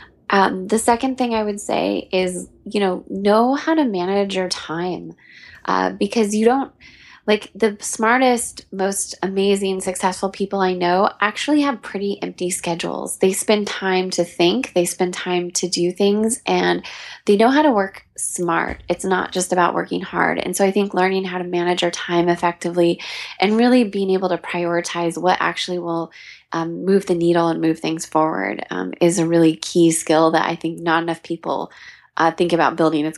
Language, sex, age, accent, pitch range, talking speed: English, female, 20-39, American, 170-205 Hz, 185 wpm